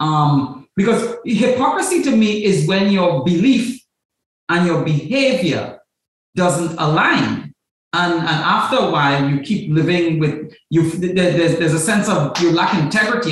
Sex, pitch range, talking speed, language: male, 165-240 Hz, 145 wpm, English